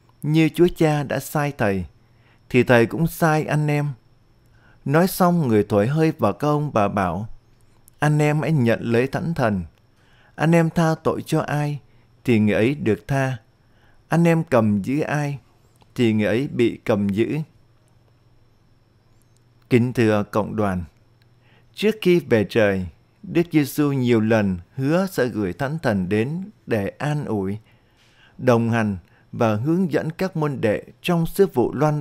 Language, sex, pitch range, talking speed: Vietnamese, male, 115-145 Hz, 155 wpm